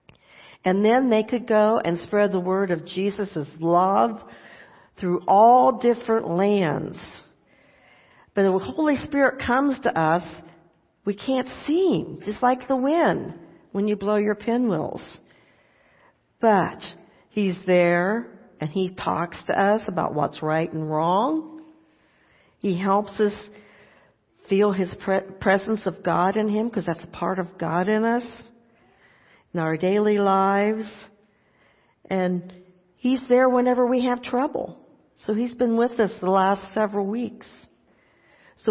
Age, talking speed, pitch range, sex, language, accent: 60-79, 140 wpm, 185-235 Hz, female, English, American